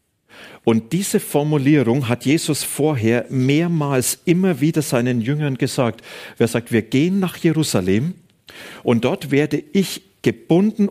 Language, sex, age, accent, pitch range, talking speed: German, male, 40-59, German, 130-165 Hz, 125 wpm